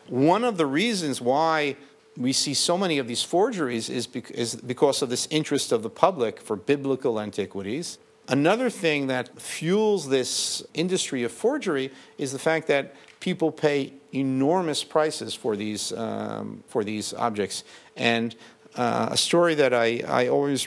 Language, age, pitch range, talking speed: English, 50-69, 115-140 Hz, 160 wpm